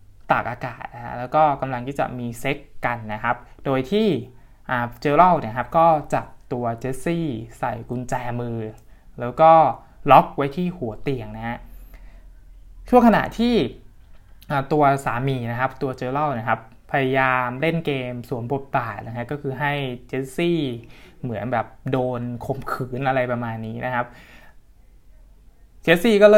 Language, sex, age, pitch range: Thai, male, 20-39, 120-150 Hz